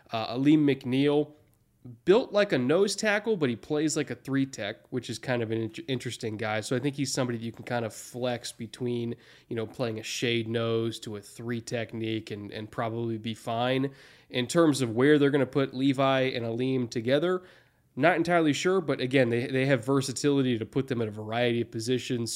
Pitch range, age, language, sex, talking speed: 115-140 Hz, 20-39, English, male, 210 wpm